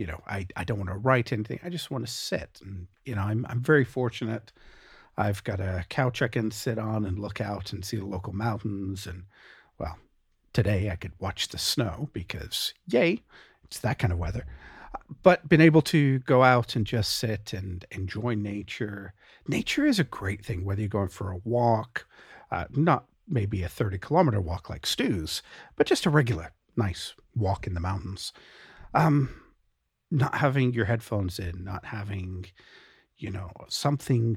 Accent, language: American, English